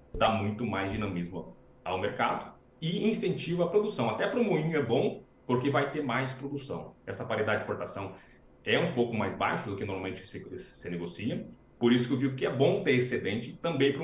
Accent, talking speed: Brazilian, 210 wpm